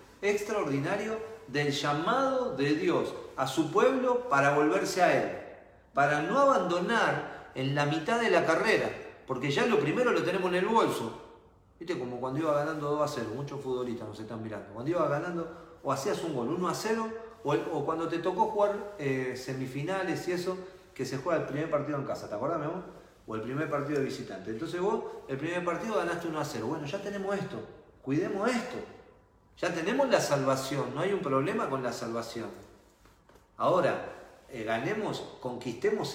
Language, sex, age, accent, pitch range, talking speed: Spanish, male, 40-59, Argentinian, 125-180 Hz, 185 wpm